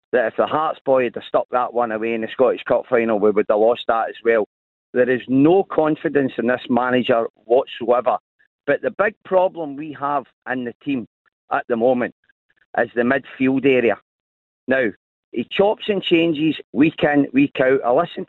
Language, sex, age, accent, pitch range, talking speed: English, male, 40-59, British, 130-175 Hz, 185 wpm